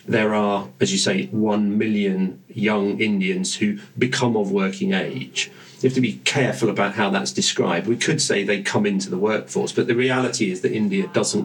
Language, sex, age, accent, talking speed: English, male, 40-59, British, 200 wpm